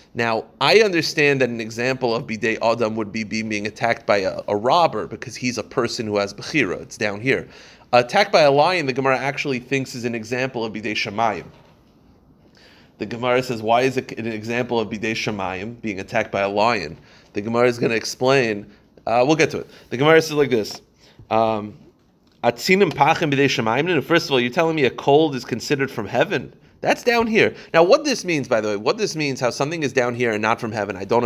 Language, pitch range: English, 105-130 Hz